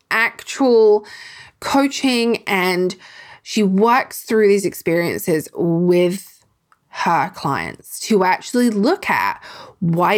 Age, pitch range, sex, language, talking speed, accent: 20-39, 175-230 Hz, female, English, 95 wpm, Australian